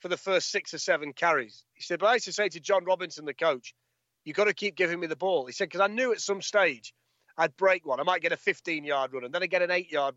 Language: English